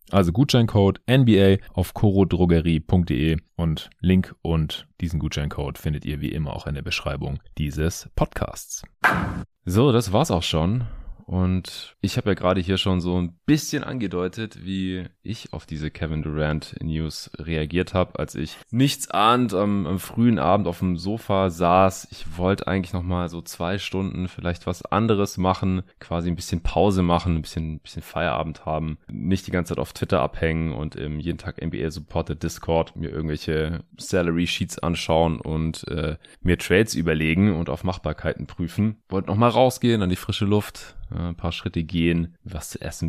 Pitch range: 80-95 Hz